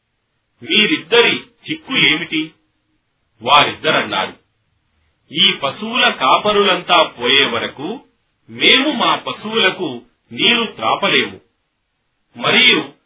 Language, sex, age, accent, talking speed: Telugu, male, 40-59, native, 60 wpm